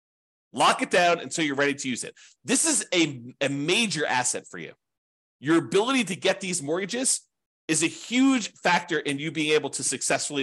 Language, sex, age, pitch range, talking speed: English, male, 30-49, 135-170 Hz, 190 wpm